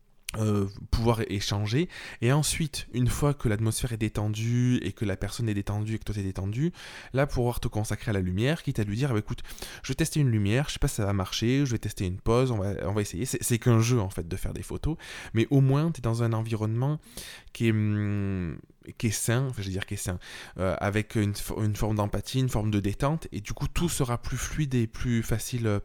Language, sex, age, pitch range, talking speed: French, male, 20-39, 100-125 Hz, 255 wpm